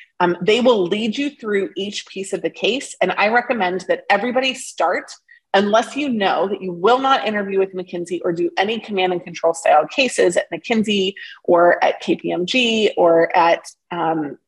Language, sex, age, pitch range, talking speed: English, female, 30-49, 180-255 Hz, 180 wpm